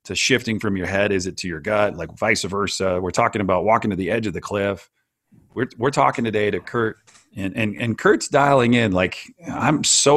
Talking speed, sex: 225 wpm, male